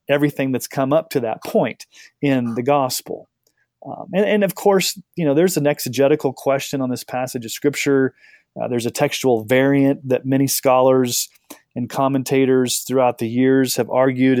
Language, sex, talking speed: English, male, 170 wpm